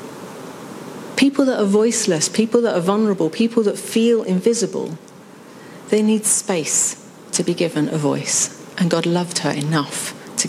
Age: 40-59